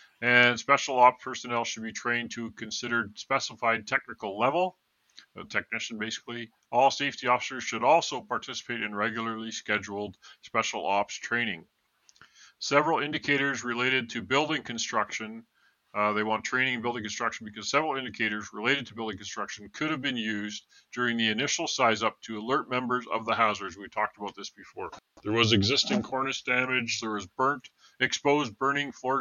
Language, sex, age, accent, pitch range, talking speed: English, male, 40-59, American, 110-130 Hz, 160 wpm